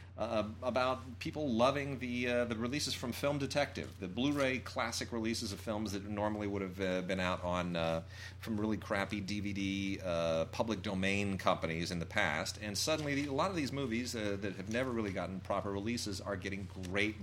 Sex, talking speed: male, 195 wpm